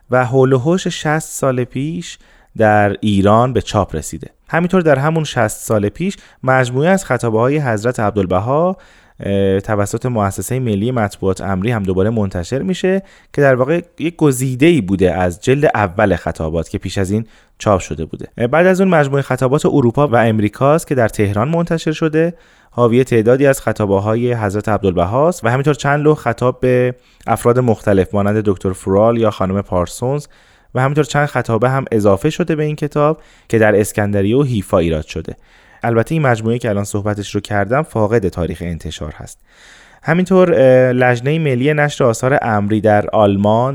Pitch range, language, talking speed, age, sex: 105-145 Hz, Persian, 165 wpm, 30-49, male